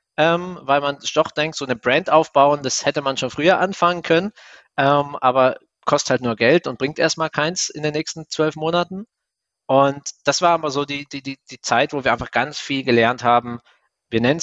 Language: German